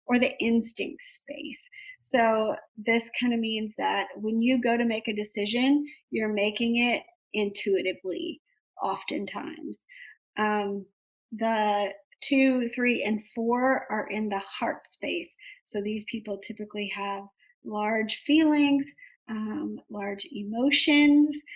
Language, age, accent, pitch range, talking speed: English, 40-59, American, 205-265 Hz, 120 wpm